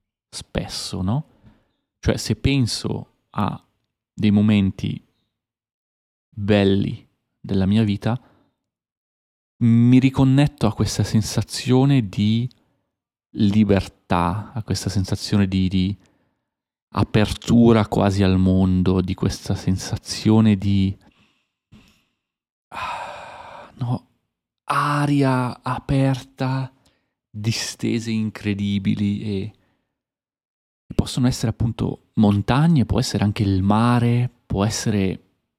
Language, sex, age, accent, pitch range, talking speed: Italian, male, 30-49, native, 100-120 Hz, 80 wpm